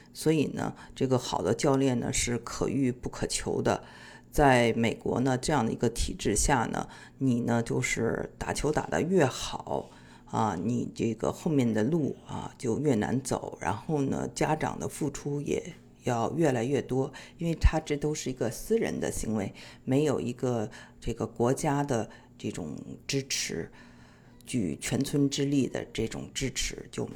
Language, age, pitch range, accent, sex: Chinese, 50-69, 115-145 Hz, native, female